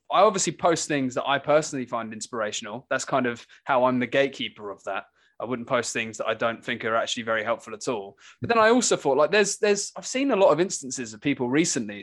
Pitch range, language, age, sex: 130-190 Hz, English, 20-39, male